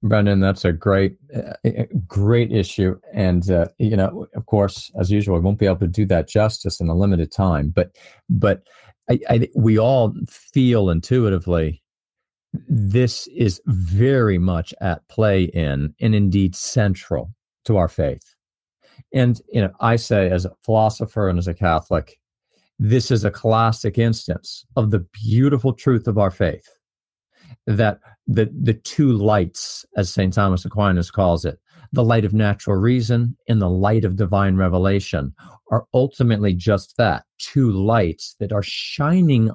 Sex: male